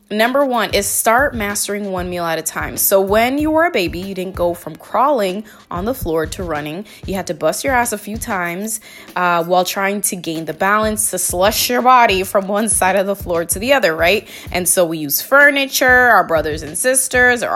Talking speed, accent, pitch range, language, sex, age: 225 wpm, American, 185-245 Hz, English, female, 20-39